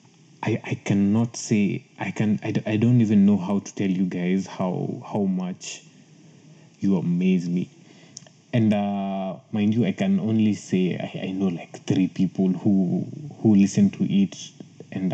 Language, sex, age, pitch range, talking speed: Swahili, male, 20-39, 110-180 Hz, 165 wpm